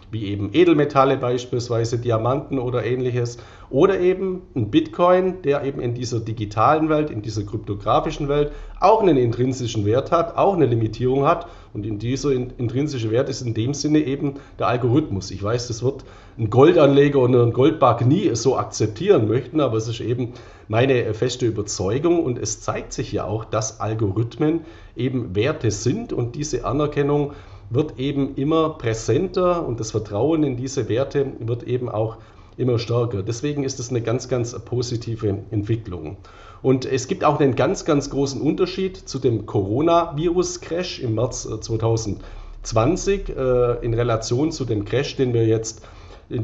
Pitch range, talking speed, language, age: 110-145 Hz, 160 wpm, German, 40-59